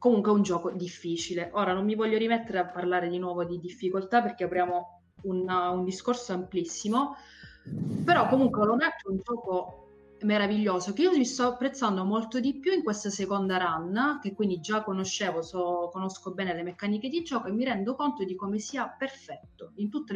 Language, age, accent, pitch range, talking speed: Italian, 30-49, native, 180-230 Hz, 185 wpm